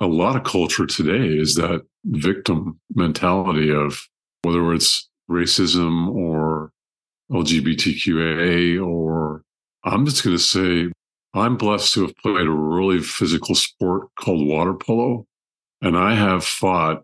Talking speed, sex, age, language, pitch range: 130 wpm, male, 50-69, English, 80-95 Hz